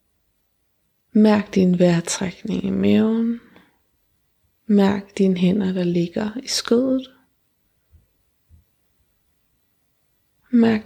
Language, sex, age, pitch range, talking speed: Danish, female, 20-39, 190-230 Hz, 70 wpm